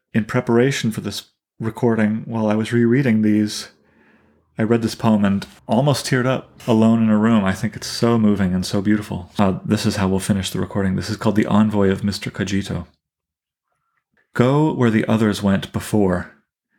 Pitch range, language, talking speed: 95-115 Hz, English, 185 wpm